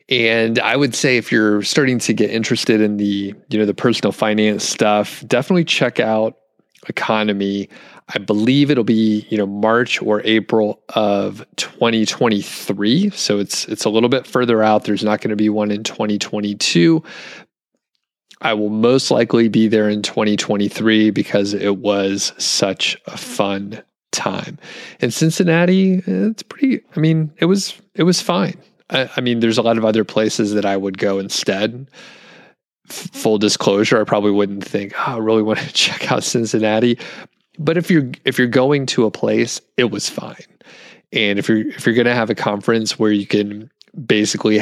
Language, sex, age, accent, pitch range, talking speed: English, male, 30-49, American, 105-125 Hz, 170 wpm